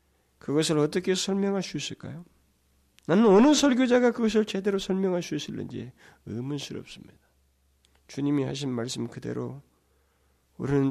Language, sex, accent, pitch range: Korean, male, native, 90-145 Hz